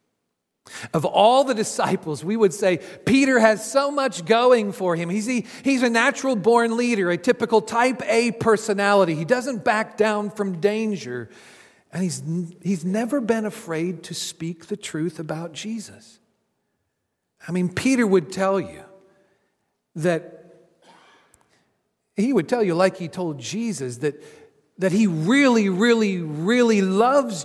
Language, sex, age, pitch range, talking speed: English, male, 50-69, 155-230 Hz, 140 wpm